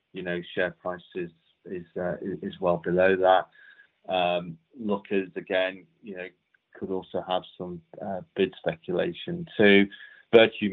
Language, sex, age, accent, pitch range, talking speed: English, male, 30-49, British, 90-100 Hz, 140 wpm